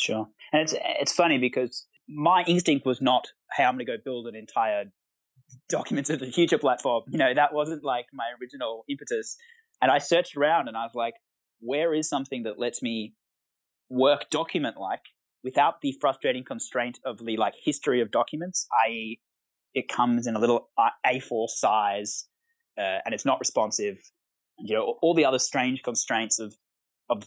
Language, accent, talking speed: English, Australian, 175 wpm